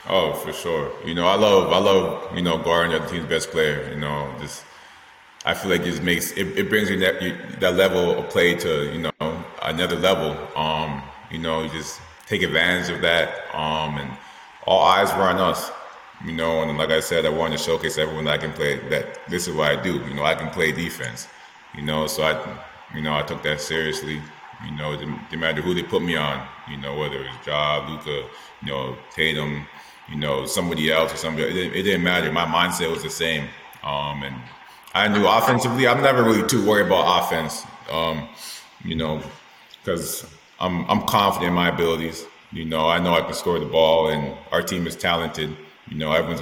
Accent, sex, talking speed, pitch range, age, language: American, male, 215 wpm, 75-90 Hz, 20-39, English